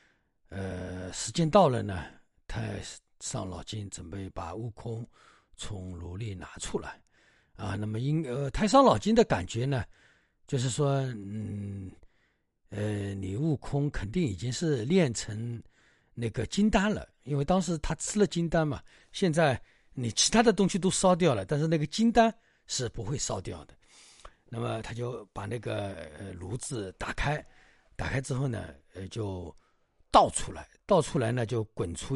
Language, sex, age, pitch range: Chinese, male, 60-79, 105-160 Hz